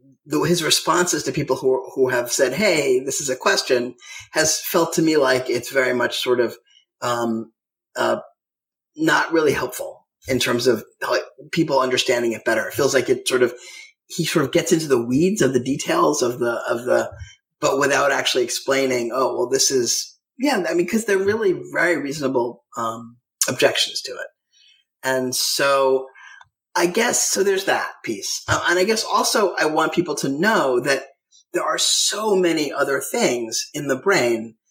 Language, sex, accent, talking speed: English, male, American, 180 wpm